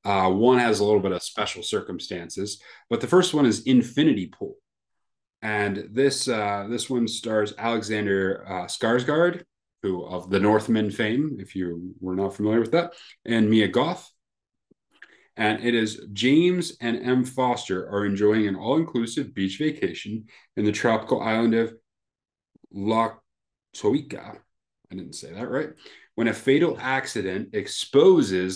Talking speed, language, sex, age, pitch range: 145 wpm, English, male, 30-49, 95-130 Hz